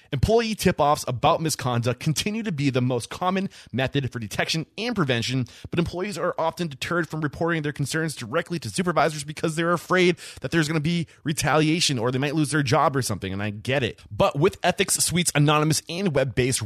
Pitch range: 130-185 Hz